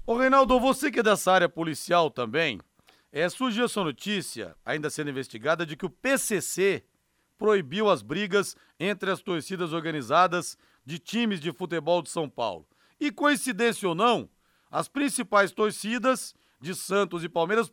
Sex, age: male, 40-59